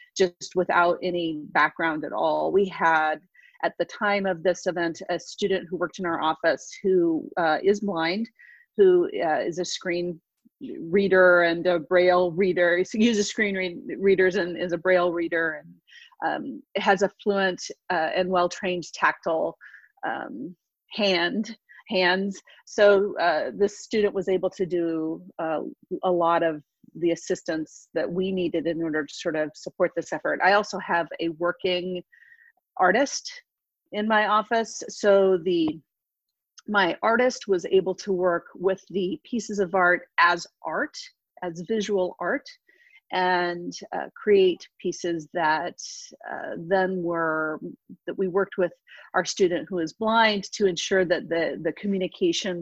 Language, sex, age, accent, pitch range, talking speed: English, female, 40-59, American, 175-205 Hz, 150 wpm